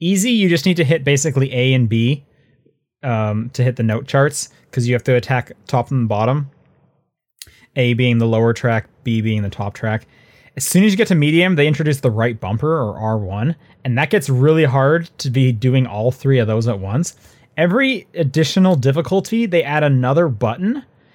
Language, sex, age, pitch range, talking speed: English, male, 20-39, 115-160 Hz, 195 wpm